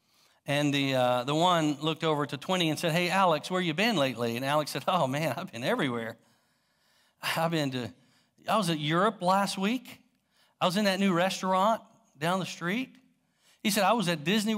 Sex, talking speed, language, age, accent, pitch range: male, 200 wpm, English, 50-69, American, 130-190 Hz